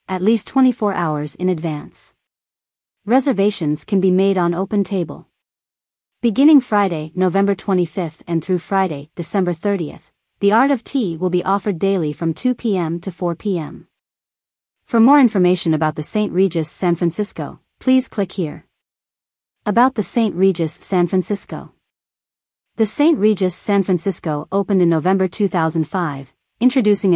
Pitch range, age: 170-210 Hz, 40-59